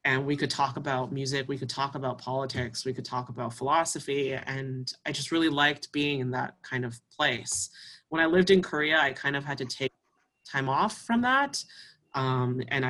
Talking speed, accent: 205 wpm, American